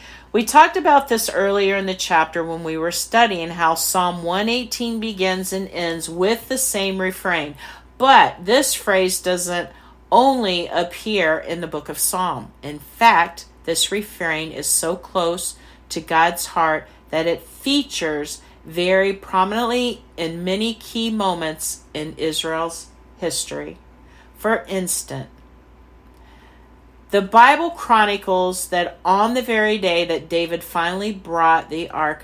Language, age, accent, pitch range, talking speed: English, 50-69, American, 150-195 Hz, 130 wpm